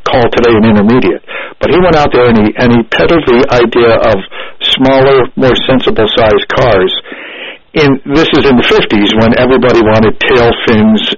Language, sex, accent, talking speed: English, male, American, 170 wpm